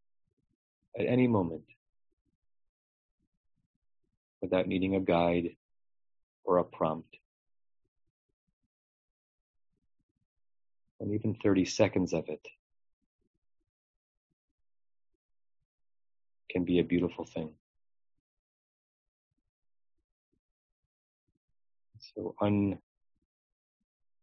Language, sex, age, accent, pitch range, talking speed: English, male, 40-59, American, 80-100 Hz, 55 wpm